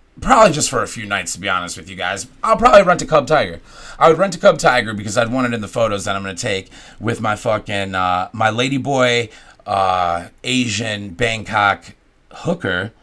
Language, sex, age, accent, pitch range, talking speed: English, male, 30-49, American, 100-130 Hz, 215 wpm